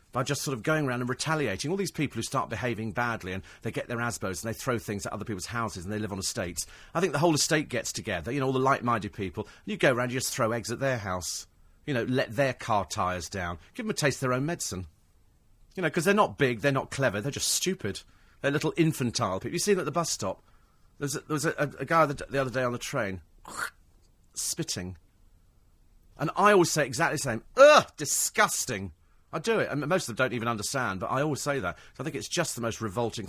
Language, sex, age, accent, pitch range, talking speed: English, male, 40-59, British, 105-160 Hz, 255 wpm